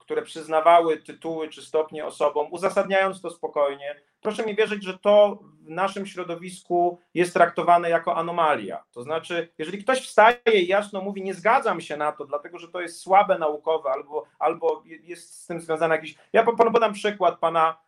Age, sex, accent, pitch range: 40-59, male, native, 155-200 Hz